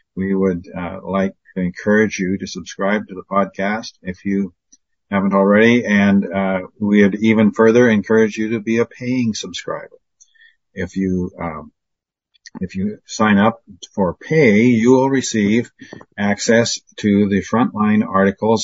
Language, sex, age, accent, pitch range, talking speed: English, male, 50-69, American, 95-120 Hz, 150 wpm